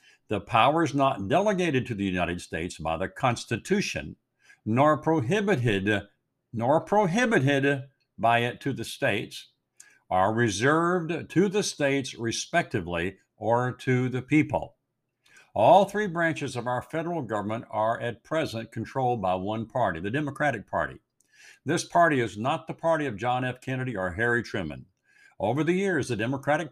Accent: American